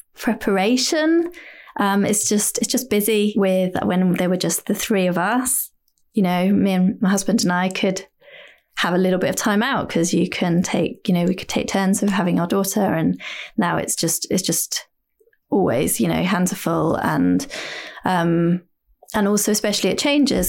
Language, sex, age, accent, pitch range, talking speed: English, female, 20-39, British, 180-225 Hz, 190 wpm